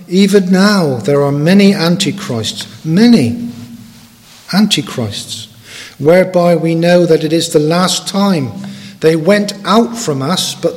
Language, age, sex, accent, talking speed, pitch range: English, 50-69, male, British, 130 wpm, 155-200 Hz